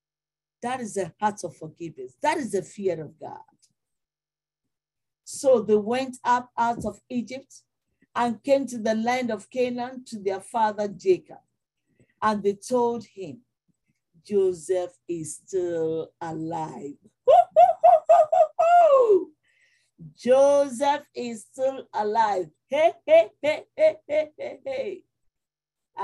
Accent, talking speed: Nigerian, 110 wpm